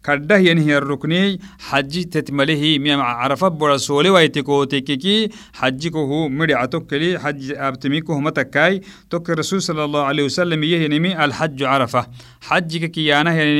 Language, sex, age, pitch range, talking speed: French, male, 50-69, 145-185 Hz, 130 wpm